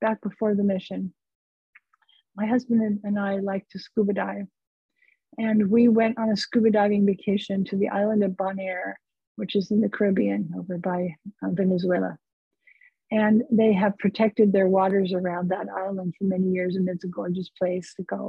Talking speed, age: 175 wpm, 50-69